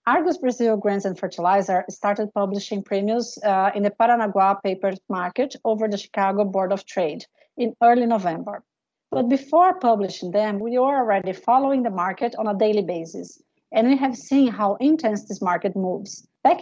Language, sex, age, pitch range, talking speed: English, female, 40-59, 190-235 Hz, 170 wpm